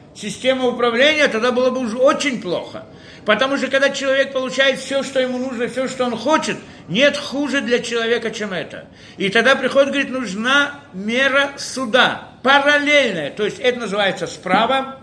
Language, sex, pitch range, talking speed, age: Russian, male, 170-265 Hz, 160 wpm, 50-69